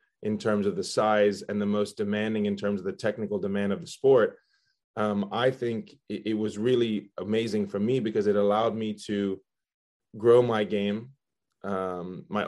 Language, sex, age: English, male, 20-39